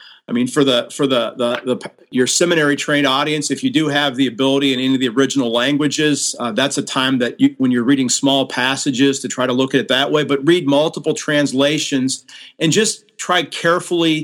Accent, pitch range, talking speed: American, 140-165 Hz, 215 wpm